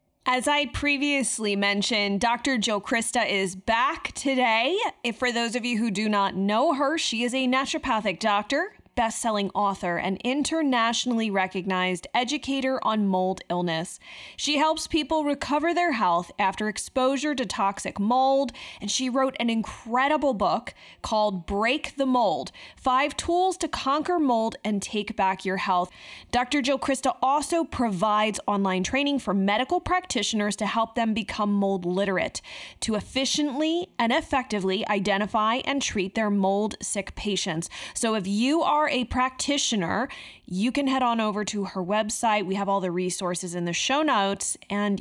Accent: American